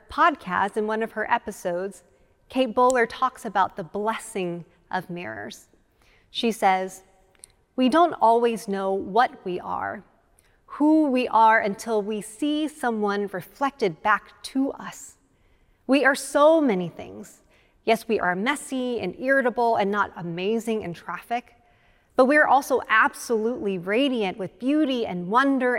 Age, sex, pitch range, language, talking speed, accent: 30-49, female, 195-270 Hz, English, 140 wpm, American